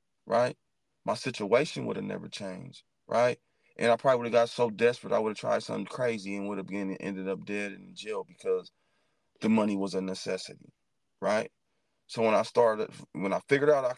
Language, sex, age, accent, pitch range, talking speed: English, male, 30-49, American, 105-145 Hz, 200 wpm